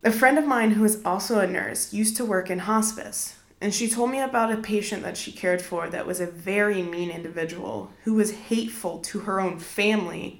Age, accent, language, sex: 20-39, American, English, female